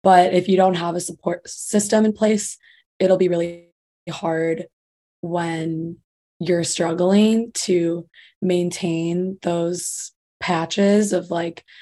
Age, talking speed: 20-39, 115 wpm